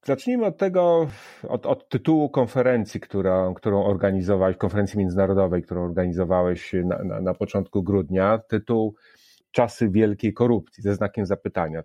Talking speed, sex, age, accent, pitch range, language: 130 wpm, male, 30-49, native, 95-115 Hz, Polish